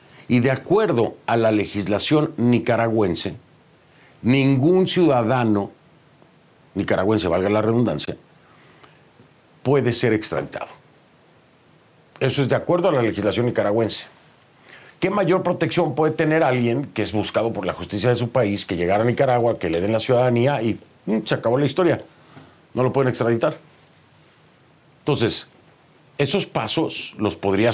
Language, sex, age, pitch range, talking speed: Spanish, male, 50-69, 105-130 Hz, 135 wpm